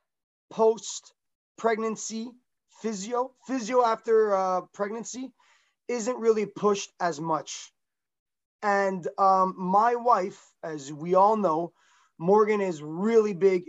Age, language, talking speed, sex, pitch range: 20-39, English, 105 wpm, male, 170-215 Hz